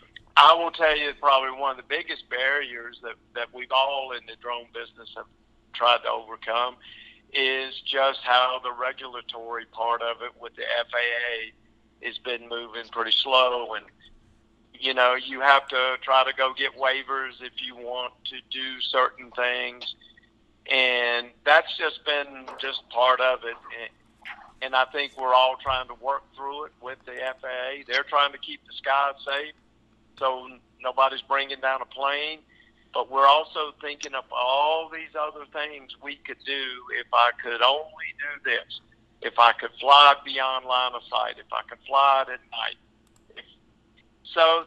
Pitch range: 120-135 Hz